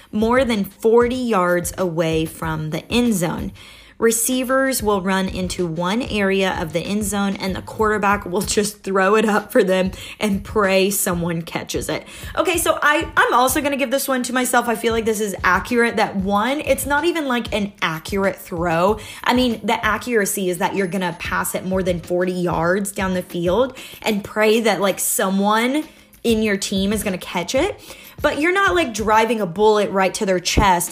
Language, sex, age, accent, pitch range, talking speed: English, female, 20-39, American, 185-235 Hz, 190 wpm